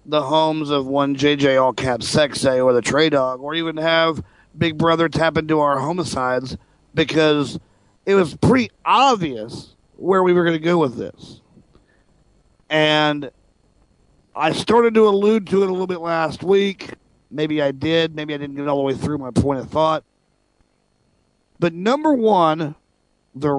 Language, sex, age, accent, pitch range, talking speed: English, male, 40-59, American, 130-165 Hz, 165 wpm